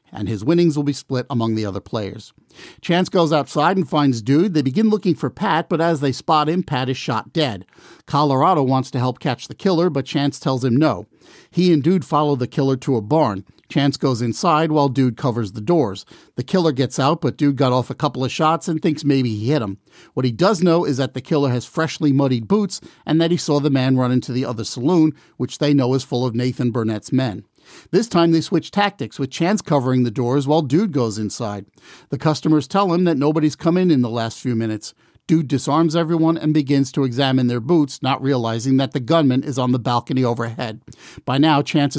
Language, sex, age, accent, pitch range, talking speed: English, male, 50-69, American, 125-160 Hz, 225 wpm